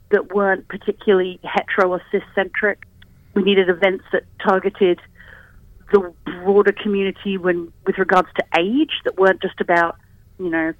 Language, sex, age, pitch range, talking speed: English, female, 40-59, 180-210 Hz, 140 wpm